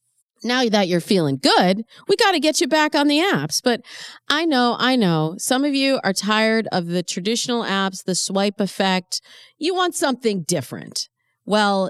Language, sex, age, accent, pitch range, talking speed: English, female, 40-59, American, 155-245 Hz, 180 wpm